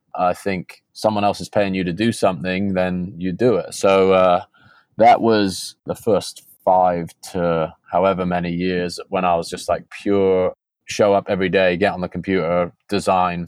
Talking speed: 180 wpm